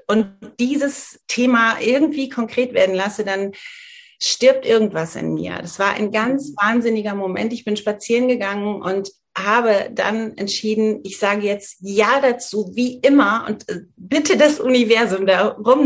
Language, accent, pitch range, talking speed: German, German, 195-240 Hz, 145 wpm